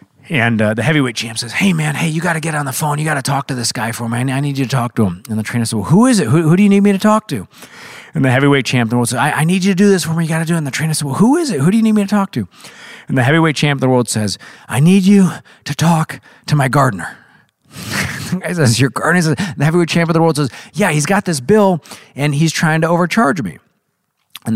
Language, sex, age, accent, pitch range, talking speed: English, male, 40-59, American, 115-160 Hz, 315 wpm